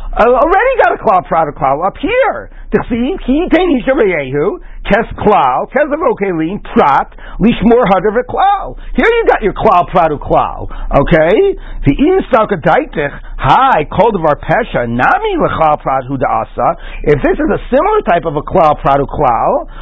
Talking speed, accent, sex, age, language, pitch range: 140 wpm, American, male, 50-69, English, 165-255 Hz